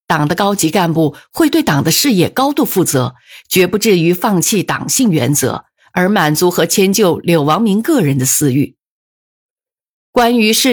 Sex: female